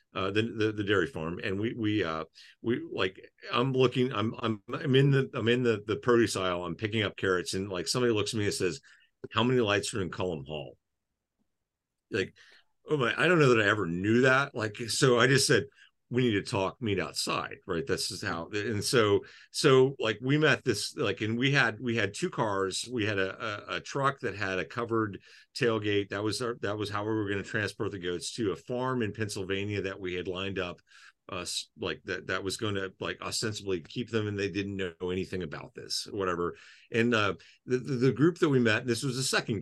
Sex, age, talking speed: male, 40-59, 230 wpm